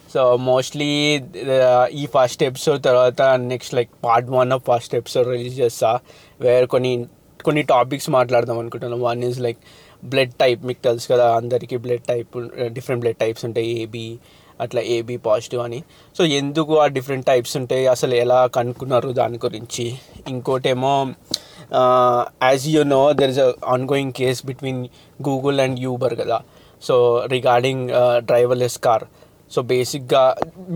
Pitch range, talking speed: 125-145 Hz, 145 wpm